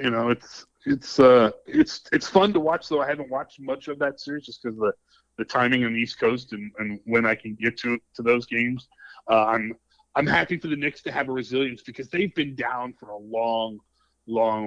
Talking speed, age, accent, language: 230 wpm, 30-49, American, English